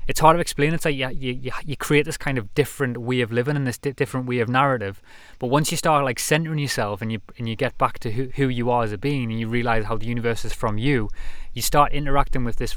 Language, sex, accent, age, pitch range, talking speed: English, male, British, 20-39, 115-140 Hz, 275 wpm